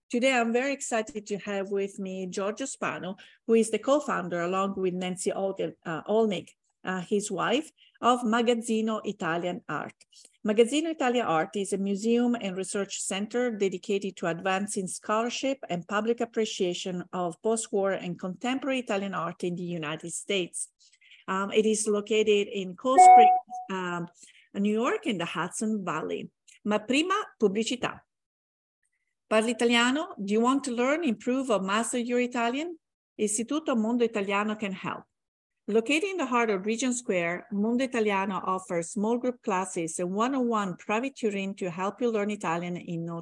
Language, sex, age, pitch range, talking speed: English, female, 50-69, 190-245 Hz, 150 wpm